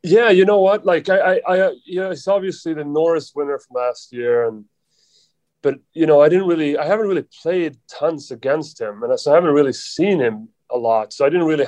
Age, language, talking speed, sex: 30-49, English, 235 wpm, male